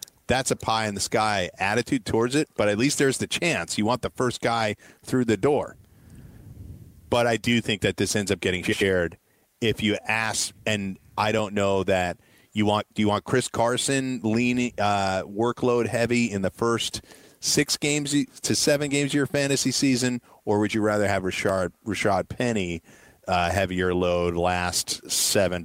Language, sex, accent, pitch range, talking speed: English, male, American, 90-110 Hz, 170 wpm